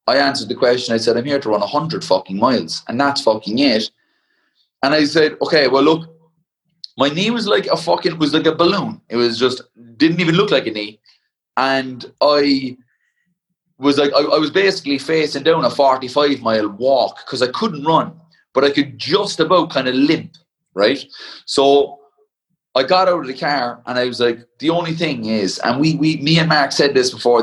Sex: male